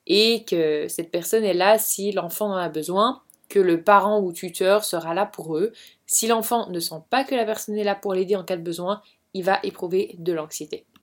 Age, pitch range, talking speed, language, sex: 20-39, 180-225 Hz, 225 wpm, French, female